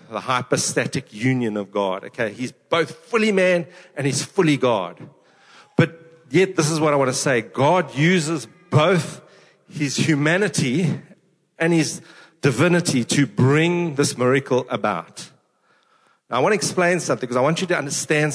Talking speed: 155 wpm